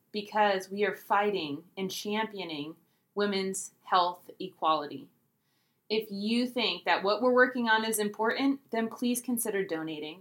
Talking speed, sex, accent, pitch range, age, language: 135 wpm, female, American, 190-230 Hz, 20-39, English